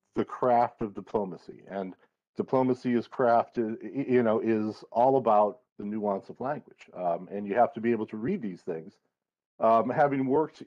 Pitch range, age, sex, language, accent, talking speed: 105-130 Hz, 40-59, male, English, American, 175 wpm